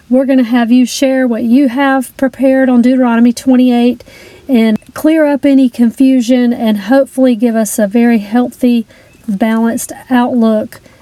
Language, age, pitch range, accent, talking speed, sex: English, 40-59, 225-265 Hz, American, 145 wpm, female